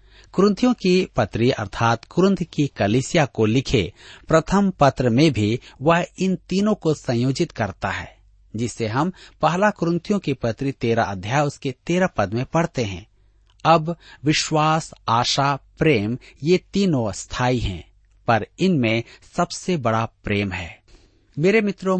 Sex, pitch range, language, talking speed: male, 105-165 Hz, Hindi, 135 wpm